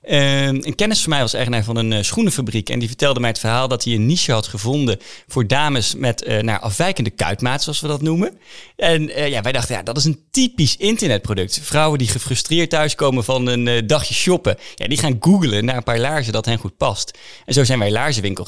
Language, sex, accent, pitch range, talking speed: Dutch, male, Dutch, 115-145 Hz, 220 wpm